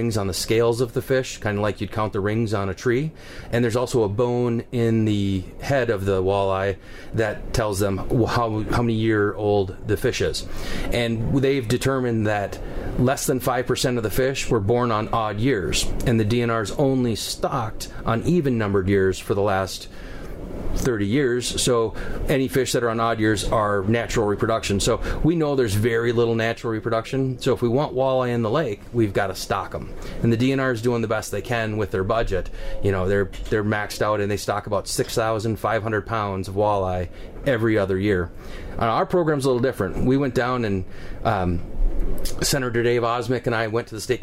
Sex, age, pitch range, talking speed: male, 30-49, 100-120 Hz, 205 wpm